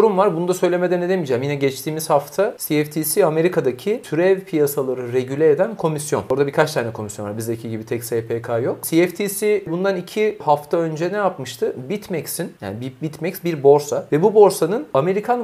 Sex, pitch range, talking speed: male, 140-200 Hz, 165 wpm